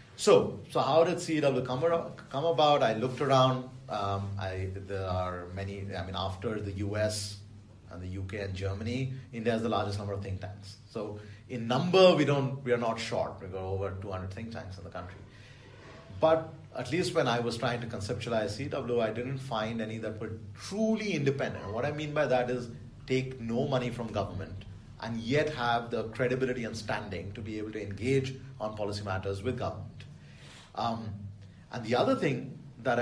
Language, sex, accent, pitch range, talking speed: English, male, Indian, 105-135 Hz, 190 wpm